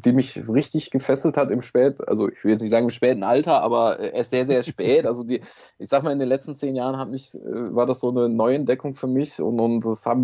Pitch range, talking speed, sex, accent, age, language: 125-150 Hz, 260 wpm, male, German, 20-39, German